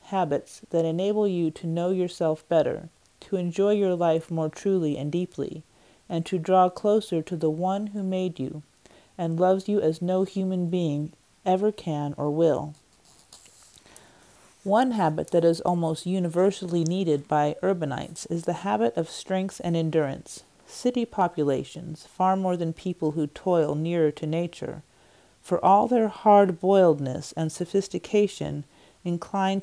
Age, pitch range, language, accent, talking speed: 40-59, 160-195 Hz, English, American, 145 wpm